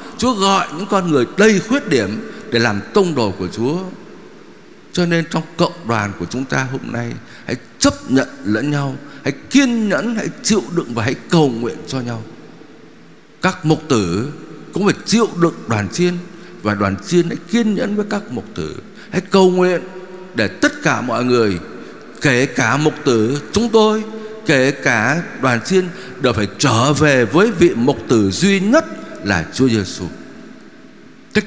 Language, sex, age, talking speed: Vietnamese, male, 60-79, 175 wpm